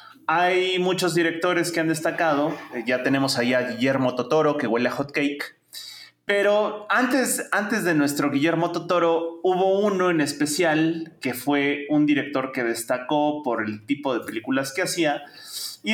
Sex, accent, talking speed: male, Mexican, 160 wpm